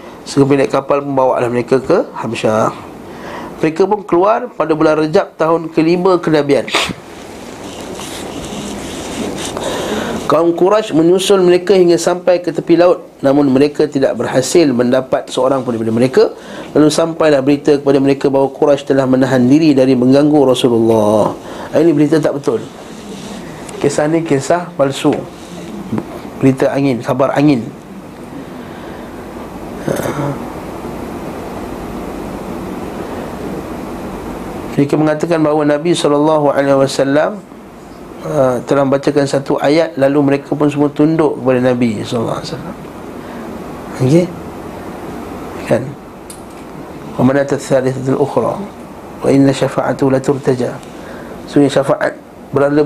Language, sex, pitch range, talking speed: Malay, male, 135-160 Hz, 105 wpm